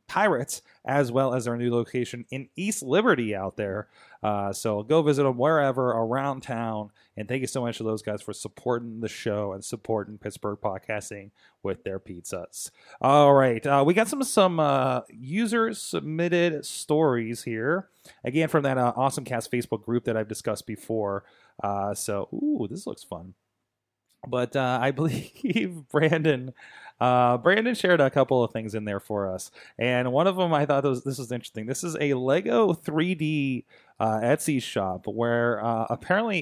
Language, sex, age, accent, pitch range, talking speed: English, male, 30-49, American, 115-155 Hz, 175 wpm